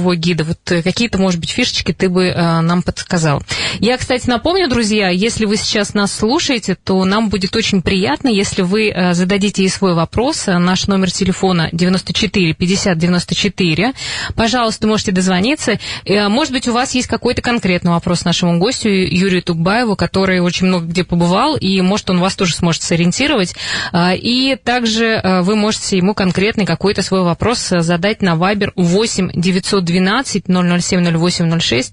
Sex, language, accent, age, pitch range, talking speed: female, Russian, native, 20-39, 175-215 Hz, 145 wpm